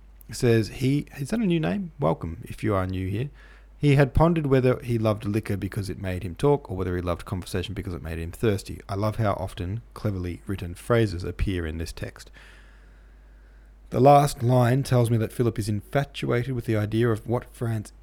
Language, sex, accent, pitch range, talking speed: English, male, Australian, 90-120 Hz, 205 wpm